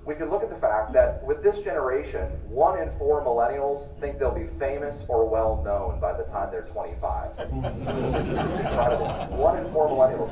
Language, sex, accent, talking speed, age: English, male, American, 200 wpm, 30-49